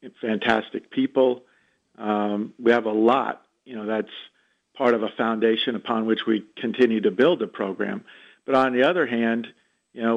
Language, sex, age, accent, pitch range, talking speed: English, male, 50-69, American, 115-135 Hz, 170 wpm